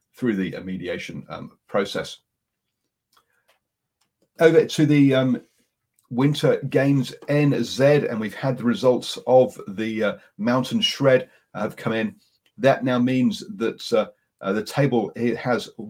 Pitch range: 100-135 Hz